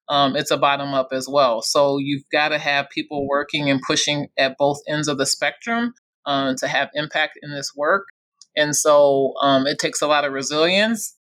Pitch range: 140-160 Hz